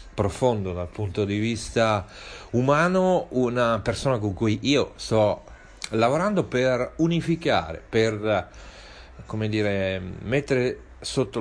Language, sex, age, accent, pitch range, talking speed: Italian, male, 40-59, native, 100-130 Hz, 105 wpm